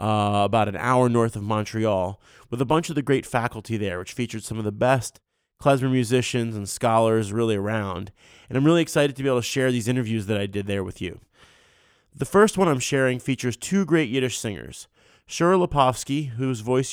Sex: male